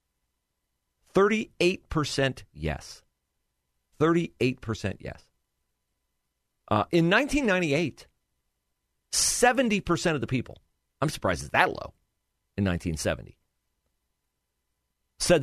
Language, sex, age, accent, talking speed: English, male, 40-59, American, 65 wpm